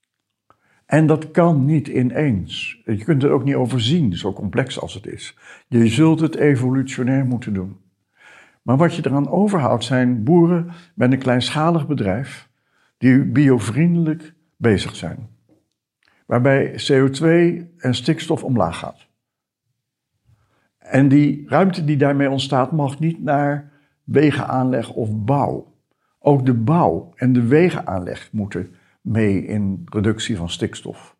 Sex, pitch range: male, 110-145 Hz